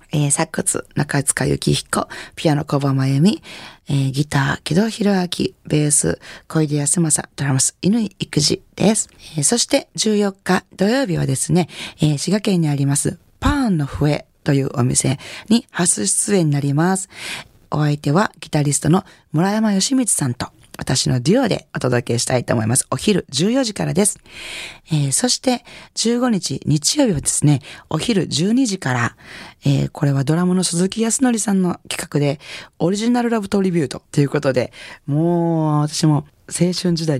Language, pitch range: Japanese, 140-190 Hz